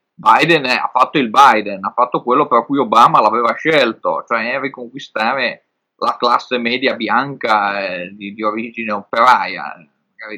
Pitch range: 110-130 Hz